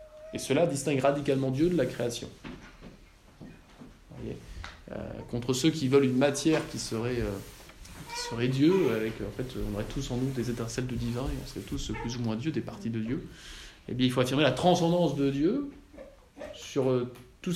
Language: French